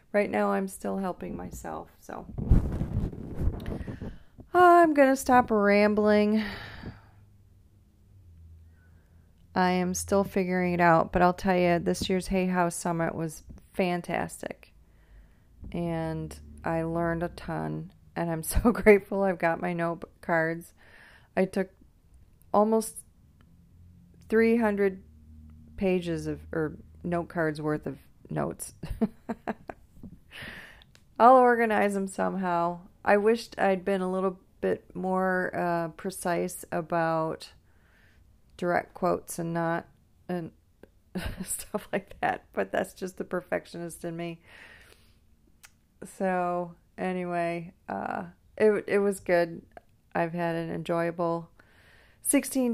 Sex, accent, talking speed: female, American, 110 wpm